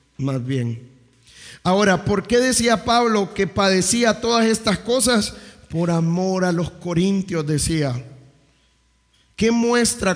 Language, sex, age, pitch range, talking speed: English, male, 50-69, 150-195 Hz, 120 wpm